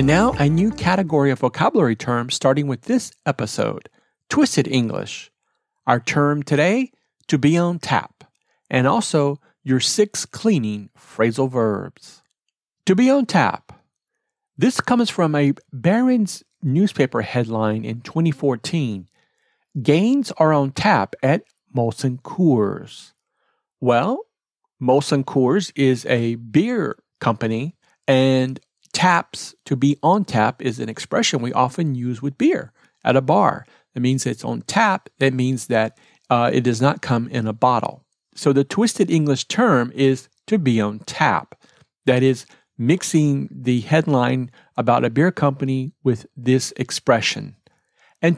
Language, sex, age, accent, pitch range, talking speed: English, male, 40-59, American, 125-175 Hz, 140 wpm